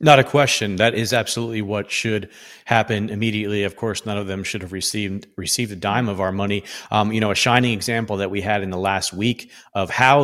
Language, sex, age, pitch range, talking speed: English, male, 40-59, 100-115 Hz, 230 wpm